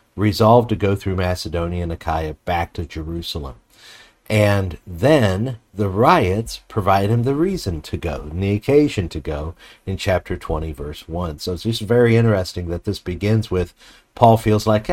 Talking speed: 170 wpm